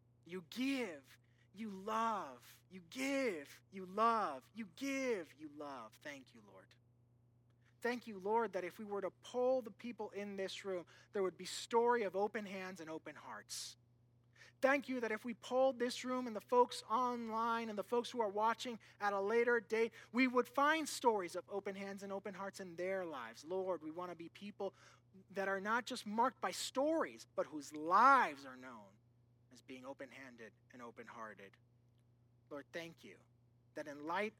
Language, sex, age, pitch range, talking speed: English, male, 30-49, 120-200 Hz, 180 wpm